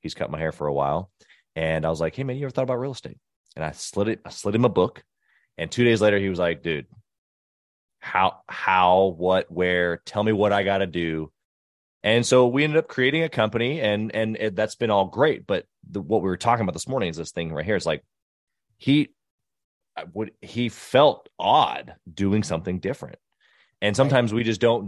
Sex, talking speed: male, 215 wpm